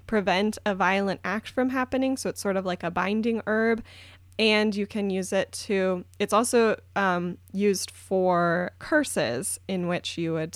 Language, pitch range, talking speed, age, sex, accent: English, 180-215 Hz, 170 wpm, 10-29, female, American